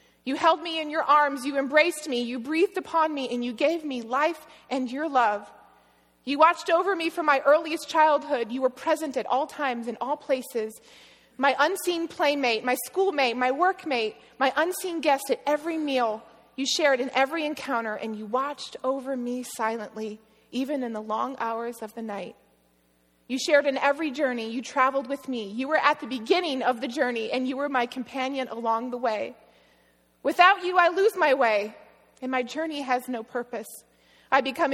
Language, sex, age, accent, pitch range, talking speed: English, female, 30-49, American, 245-305 Hz, 190 wpm